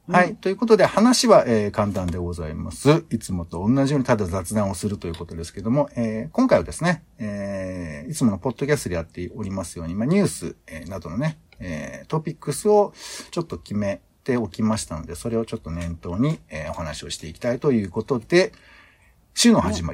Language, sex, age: Japanese, male, 60-79